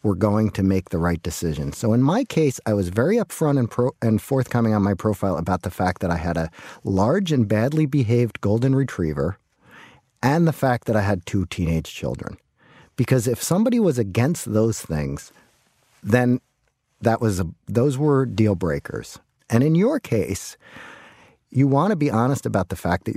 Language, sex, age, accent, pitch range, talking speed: English, male, 40-59, American, 95-130 Hz, 185 wpm